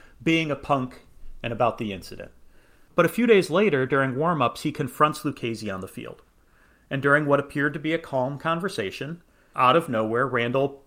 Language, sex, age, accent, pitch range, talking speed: English, male, 40-59, American, 115-150 Hz, 180 wpm